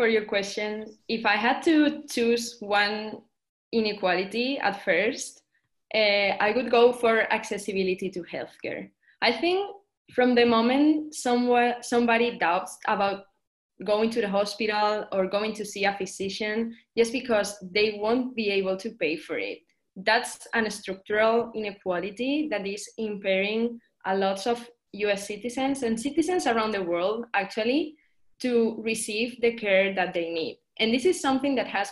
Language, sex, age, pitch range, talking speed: English, female, 20-39, 190-235 Hz, 150 wpm